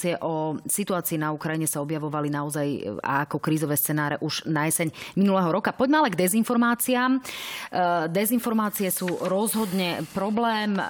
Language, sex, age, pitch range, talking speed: Slovak, female, 30-49, 170-215 Hz, 125 wpm